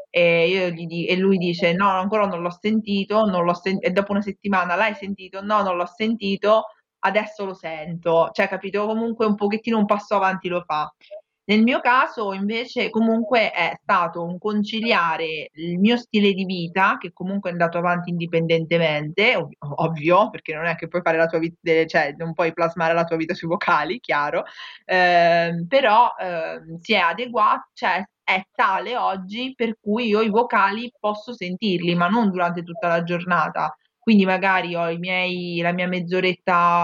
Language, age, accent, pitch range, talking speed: Italian, 20-39, native, 175-205 Hz, 180 wpm